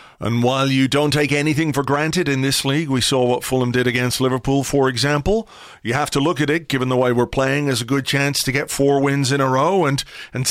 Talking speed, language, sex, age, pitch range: 250 wpm, English, male, 40-59, 120-155 Hz